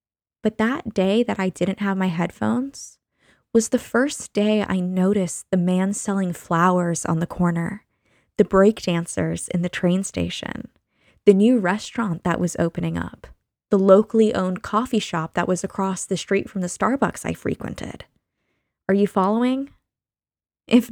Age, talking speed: 10-29, 155 wpm